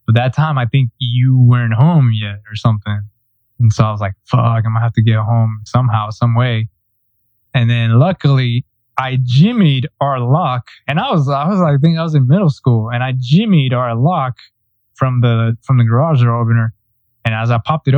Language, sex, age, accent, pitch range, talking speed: English, male, 20-39, American, 115-135 Hz, 205 wpm